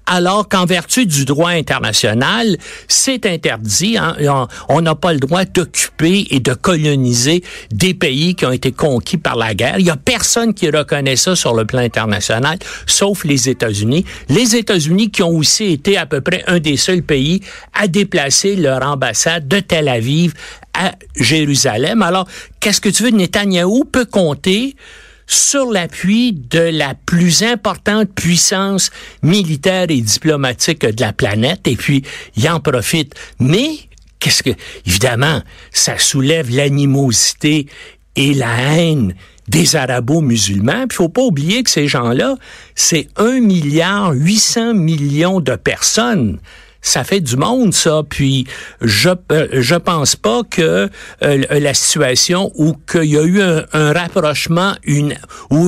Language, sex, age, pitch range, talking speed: French, male, 60-79, 140-190 Hz, 150 wpm